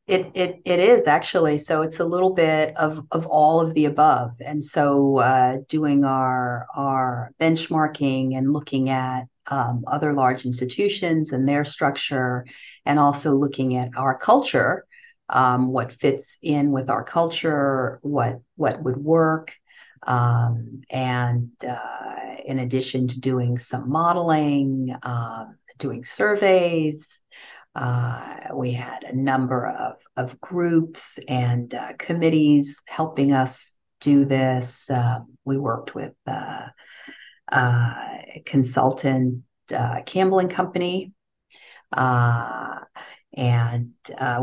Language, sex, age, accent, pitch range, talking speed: English, female, 50-69, American, 125-155 Hz, 125 wpm